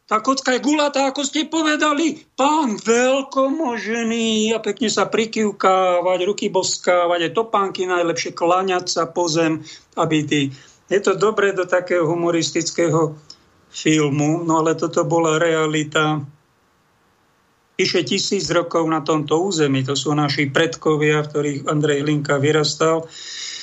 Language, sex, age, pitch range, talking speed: Slovak, male, 50-69, 160-200 Hz, 130 wpm